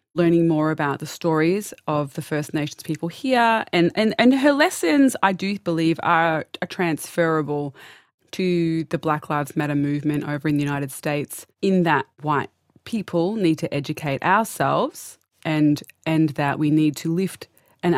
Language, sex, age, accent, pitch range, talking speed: English, female, 20-39, Australian, 150-175 Hz, 165 wpm